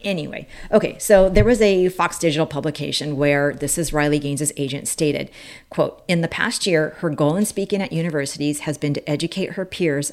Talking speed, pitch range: 195 wpm, 140-165 Hz